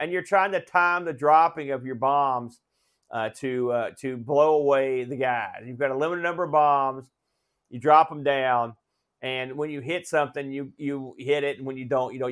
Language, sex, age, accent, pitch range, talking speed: English, male, 40-59, American, 130-175 Hz, 215 wpm